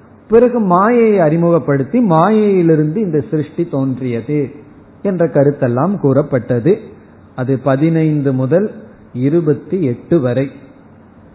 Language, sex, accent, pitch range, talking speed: Tamil, male, native, 140-195 Hz, 75 wpm